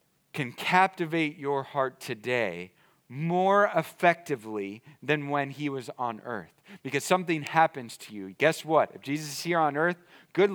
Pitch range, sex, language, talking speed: 150-215 Hz, male, English, 155 wpm